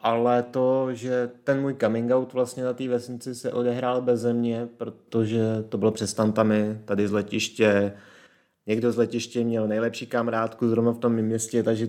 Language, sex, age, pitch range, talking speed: Czech, male, 30-49, 105-125 Hz, 165 wpm